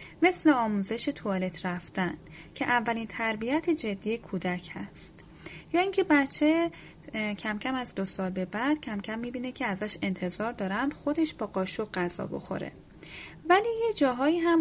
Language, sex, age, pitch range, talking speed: Persian, female, 10-29, 195-300 Hz, 150 wpm